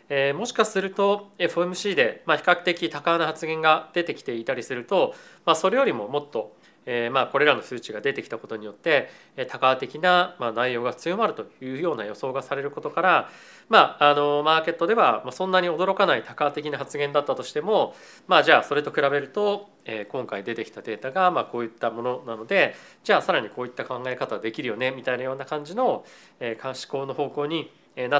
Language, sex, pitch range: Japanese, male, 130-185 Hz